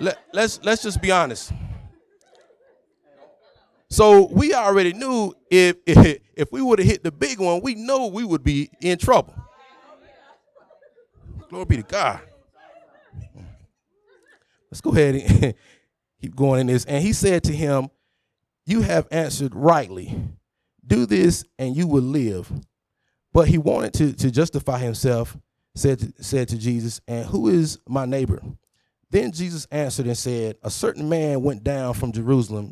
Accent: American